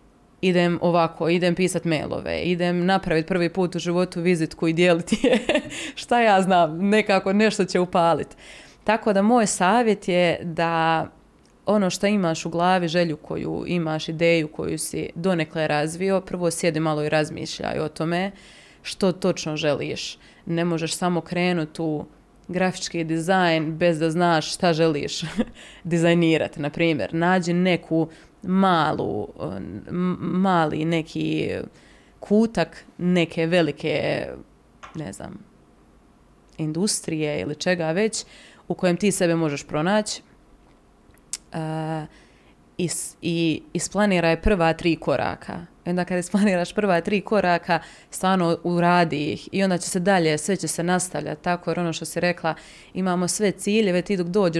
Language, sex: Croatian, female